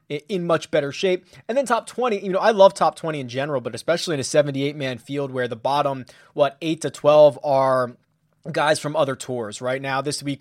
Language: English